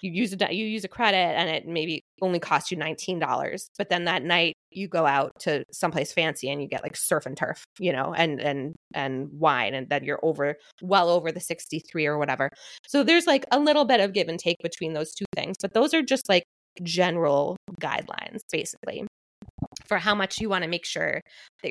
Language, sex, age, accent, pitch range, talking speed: English, female, 20-39, American, 165-220 Hz, 220 wpm